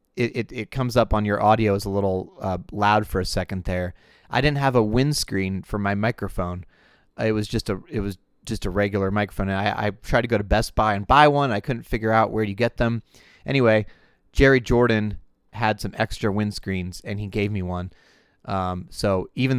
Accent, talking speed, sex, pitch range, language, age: American, 215 wpm, male, 100-115 Hz, English, 30-49